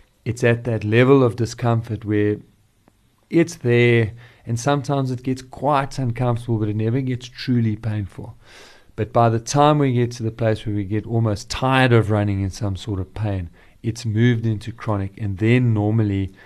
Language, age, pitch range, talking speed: English, 40-59, 105-125 Hz, 180 wpm